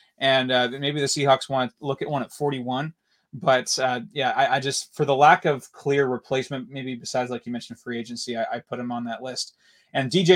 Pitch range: 130-145 Hz